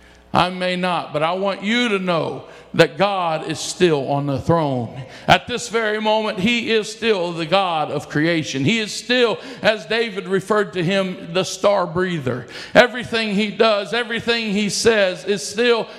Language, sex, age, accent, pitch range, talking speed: English, male, 50-69, American, 165-220 Hz, 175 wpm